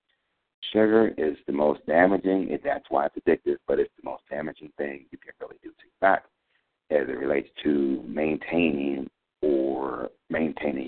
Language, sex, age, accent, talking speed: English, male, 60-79, American, 165 wpm